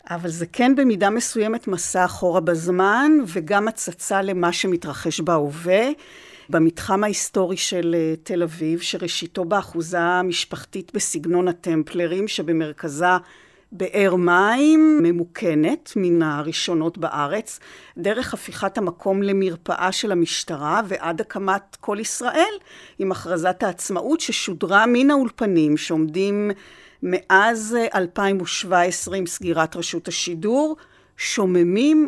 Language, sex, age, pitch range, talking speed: Hebrew, female, 50-69, 175-225 Hz, 100 wpm